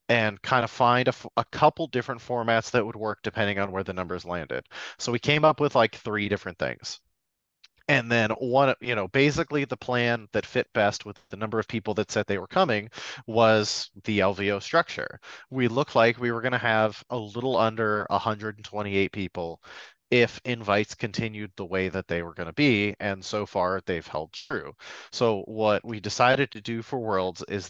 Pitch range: 100-120 Hz